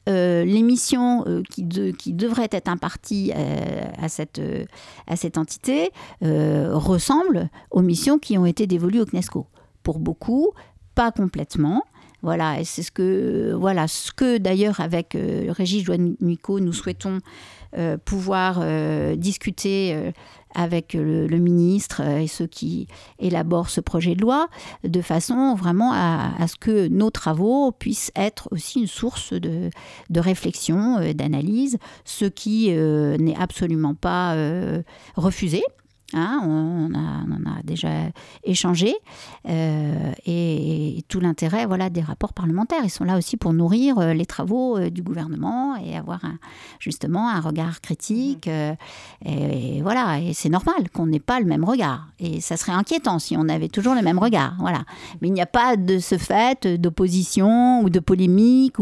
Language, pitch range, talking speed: French, 160-210 Hz, 165 wpm